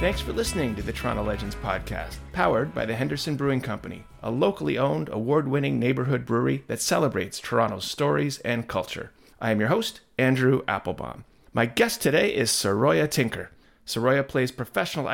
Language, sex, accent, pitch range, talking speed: English, male, American, 115-155 Hz, 165 wpm